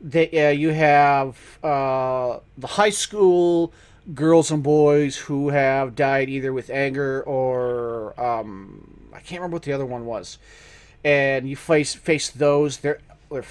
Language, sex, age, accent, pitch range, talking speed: English, male, 30-49, American, 130-150 Hz, 150 wpm